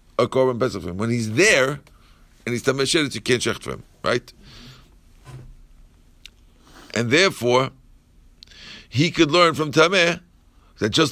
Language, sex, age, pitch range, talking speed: English, male, 50-69, 120-155 Hz, 120 wpm